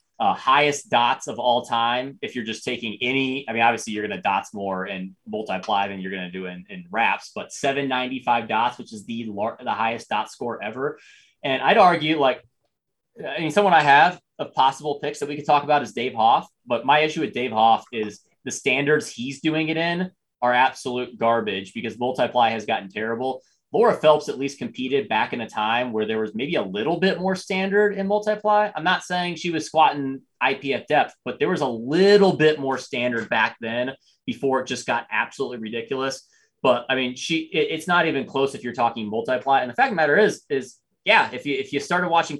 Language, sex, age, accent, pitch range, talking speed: English, male, 20-39, American, 115-155 Hz, 215 wpm